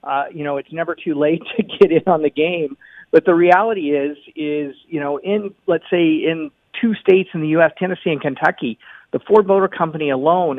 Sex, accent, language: male, American, English